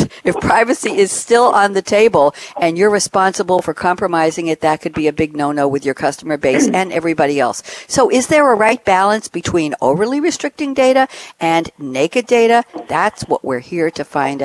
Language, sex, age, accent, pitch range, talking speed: English, female, 60-79, American, 155-235 Hz, 185 wpm